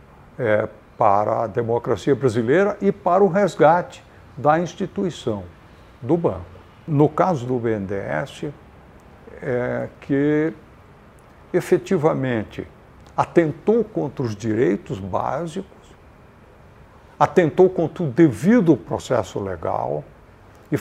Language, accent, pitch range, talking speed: Portuguese, Brazilian, 105-160 Hz, 85 wpm